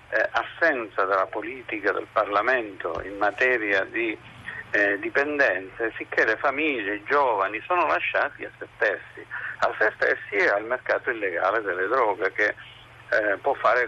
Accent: native